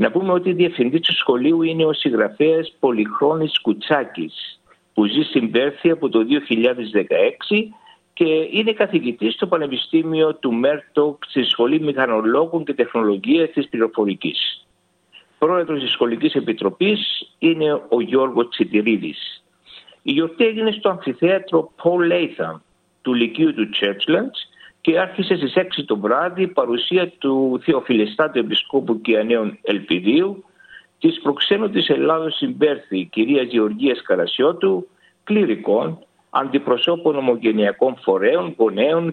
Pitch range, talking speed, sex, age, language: 130-190 Hz, 115 wpm, male, 60-79, Greek